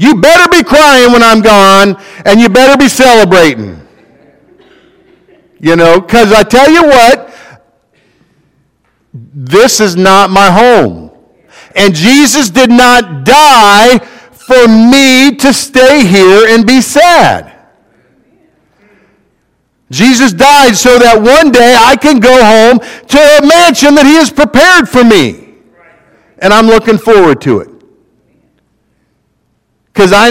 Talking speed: 125 wpm